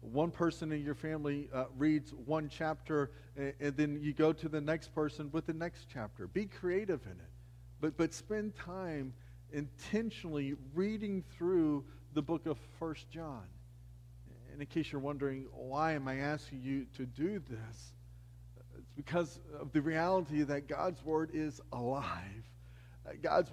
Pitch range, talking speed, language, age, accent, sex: 130-165 Hz, 160 wpm, English, 40-59, American, male